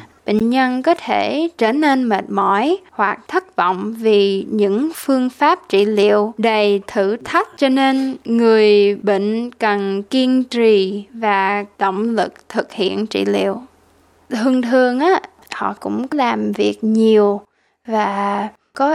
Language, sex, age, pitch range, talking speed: Vietnamese, female, 20-39, 205-265 Hz, 140 wpm